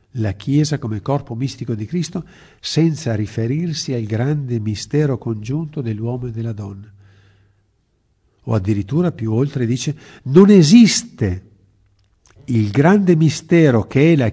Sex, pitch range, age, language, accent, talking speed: male, 105-140 Hz, 50-69, Italian, native, 125 wpm